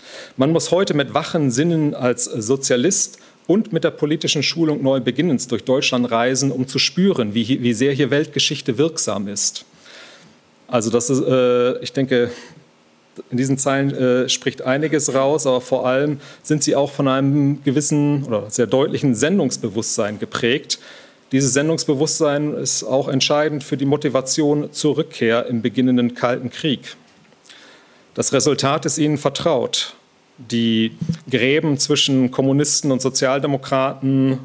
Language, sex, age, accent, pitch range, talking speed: German, male, 40-59, German, 125-145 Hz, 140 wpm